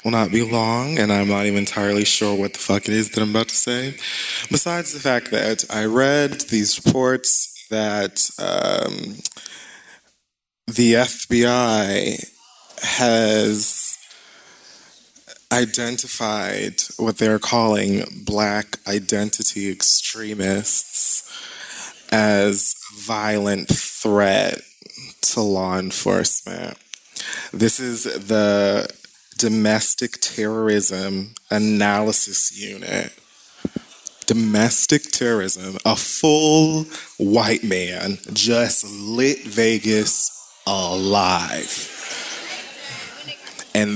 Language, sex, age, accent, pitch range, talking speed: English, male, 20-39, American, 105-120 Hz, 85 wpm